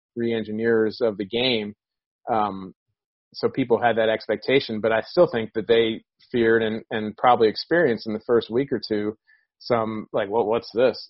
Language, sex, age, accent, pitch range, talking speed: English, male, 30-49, American, 110-125 Hz, 180 wpm